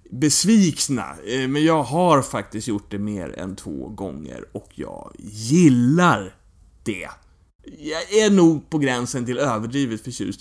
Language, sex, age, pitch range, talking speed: English, male, 30-49, 110-150 Hz, 135 wpm